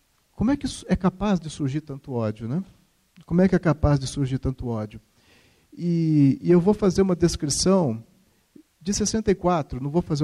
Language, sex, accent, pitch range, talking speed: Portuguese, male, Brazilian, 125-165 Hz, 180 wpm